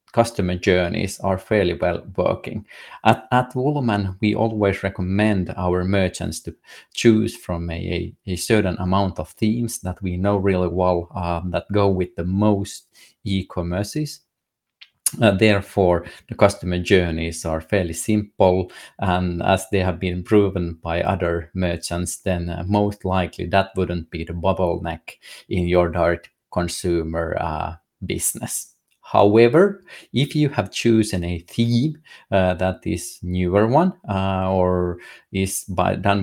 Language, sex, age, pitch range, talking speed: English, male, 30-49, 90-100 Hz, 140 wpm